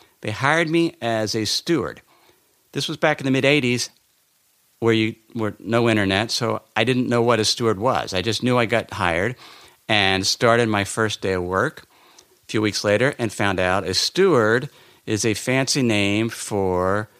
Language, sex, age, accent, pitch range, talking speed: English, male, 50-69, American, 100-125 Hz, 185 wpm